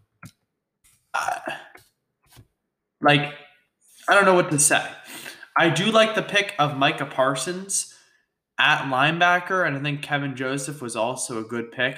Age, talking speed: 20-39, 140 wpm